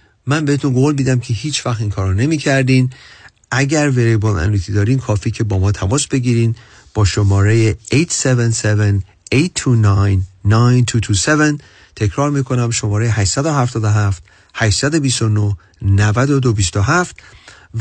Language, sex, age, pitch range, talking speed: Persian, male, 40-59, 105-140 Hz, 95 wpm